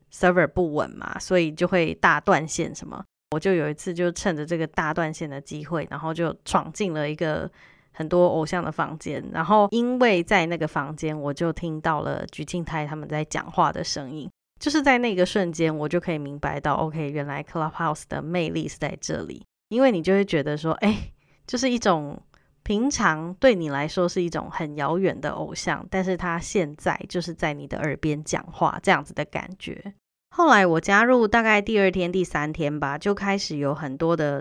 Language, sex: Chinese, female